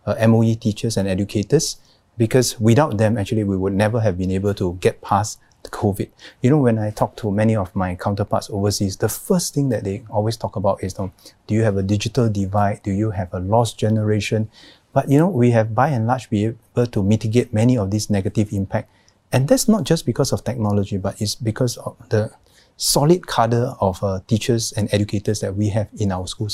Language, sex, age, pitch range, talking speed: English, male, 30-49, 100-115 Hz, 215 wpm